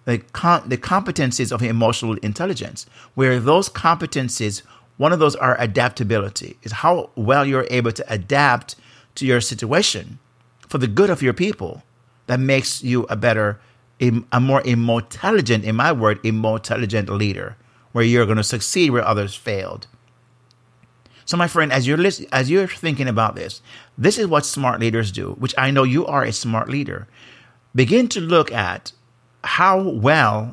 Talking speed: 160 wpm